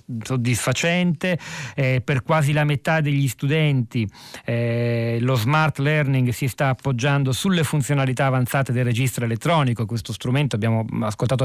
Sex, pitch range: male, 110-135 Hz